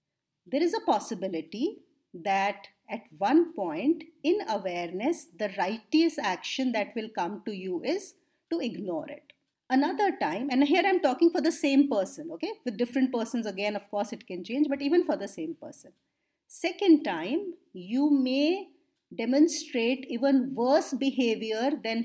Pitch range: 220-305 Hz